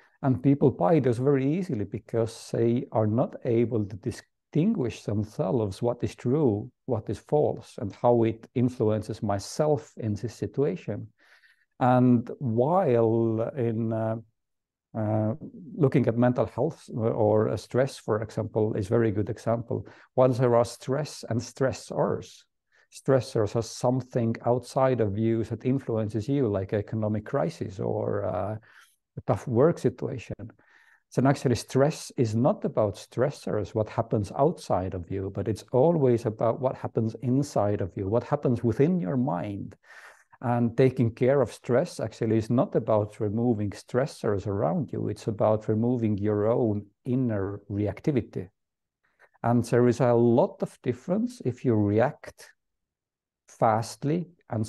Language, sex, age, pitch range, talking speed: English, male, 50-69, 110-130 Hz, 140 wpm